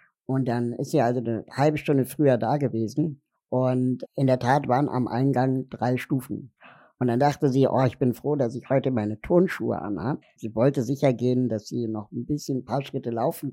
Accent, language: German, German